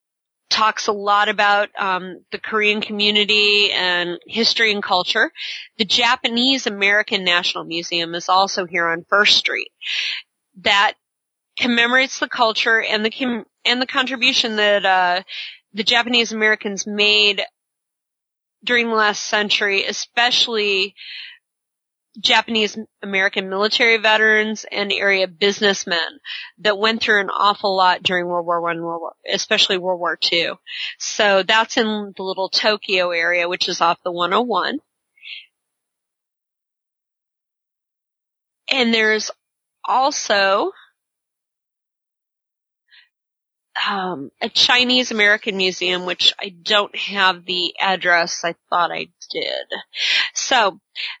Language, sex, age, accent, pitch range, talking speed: English, female, 30-49, American, 185-225 Hz, 110 wpm